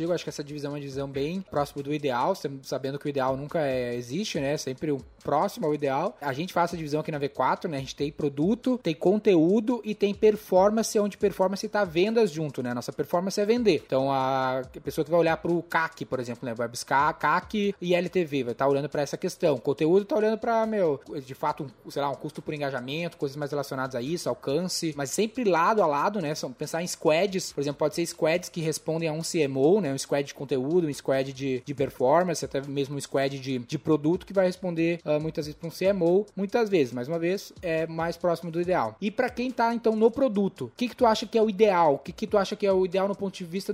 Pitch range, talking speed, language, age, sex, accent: 145-200 Hz, 245 wpm, Portuguese, 10-29, male, Brazilian